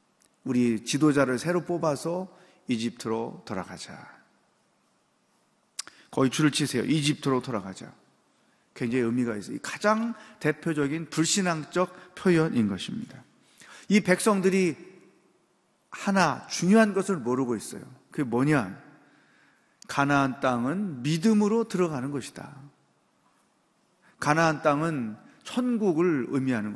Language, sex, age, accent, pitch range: Korean, male, 40-59, native, 135-190 Hz